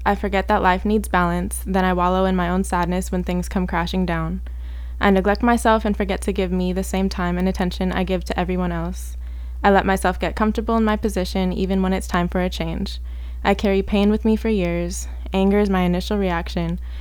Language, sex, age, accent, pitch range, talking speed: English, female, 20-39, American, 160-190 Hz, 220 wpm